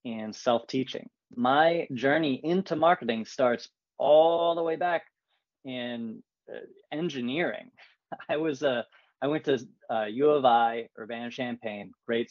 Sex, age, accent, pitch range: male, 20-39, American, 115-145 Hz